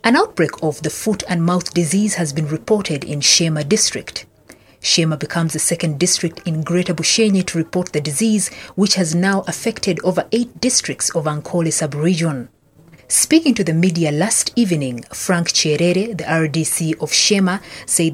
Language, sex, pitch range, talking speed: English, female, 155-195 Hz, 160 wpm